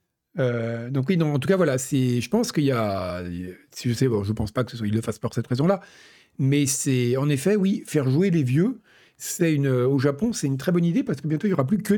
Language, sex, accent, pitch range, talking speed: French, male, French, 125-170 Hz, 285 wpm